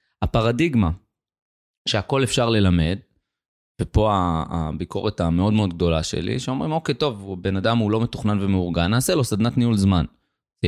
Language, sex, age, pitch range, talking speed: Hebrew, male, 30-49, 90-115 Hz, 140 wpm